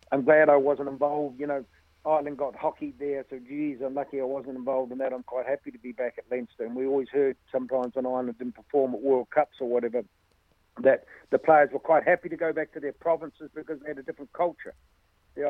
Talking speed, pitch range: 235 wpm, 130-150 Hz